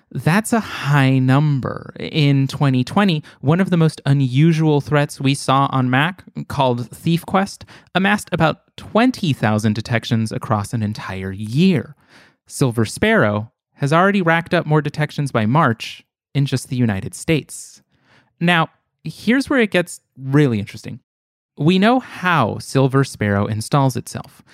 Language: English